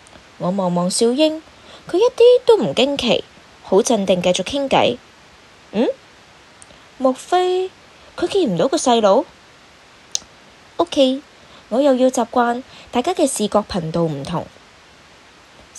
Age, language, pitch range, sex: 20-39, Chinese, 195-310 Hz, female